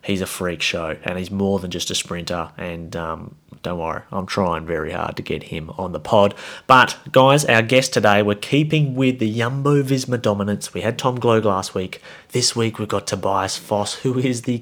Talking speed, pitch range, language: 215 wpm, 100-125 Hz, English